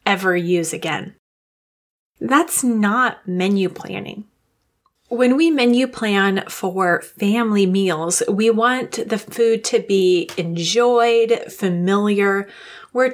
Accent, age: American, 30-49